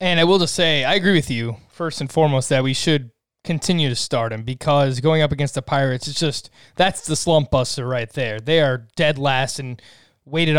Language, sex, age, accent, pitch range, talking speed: English, male, 20-39, American, 130-160 Hz, 220 wpm